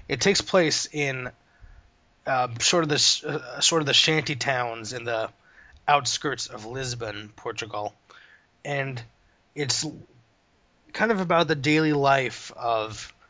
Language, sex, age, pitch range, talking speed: English, male, 20-39, 110-140 Hz, 130 wpm